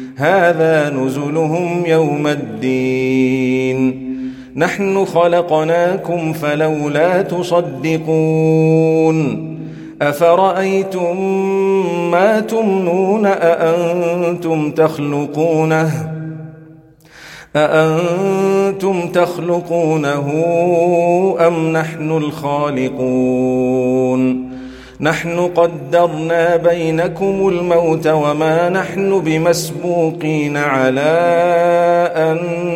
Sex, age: male, 40-59